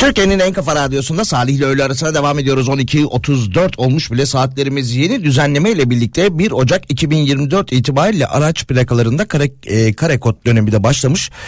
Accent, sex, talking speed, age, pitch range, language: native, male, 150 wpm, 40-59, 110-135 Hz, Turkish